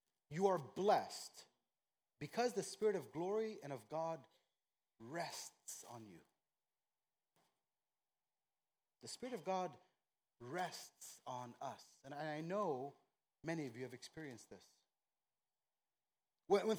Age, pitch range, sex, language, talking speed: 30-49, 160-205 Hz, male, English, 110 wpm